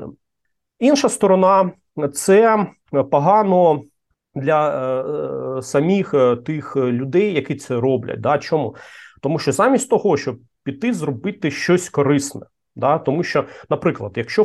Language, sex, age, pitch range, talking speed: Ukrainian, male, 30-49, 135-185 Hz, 115 wpm